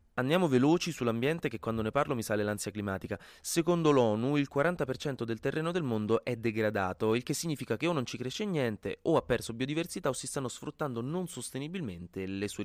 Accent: native